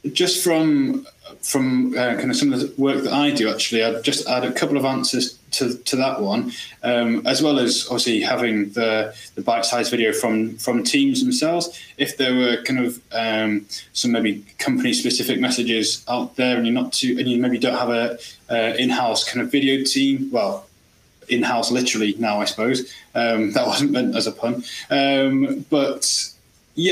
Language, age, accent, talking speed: English, 20-39, British, 190 wpm